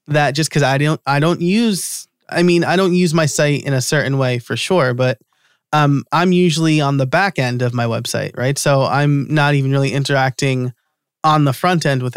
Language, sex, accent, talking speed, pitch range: English, male, American, 215 wpm, 135-165 Hz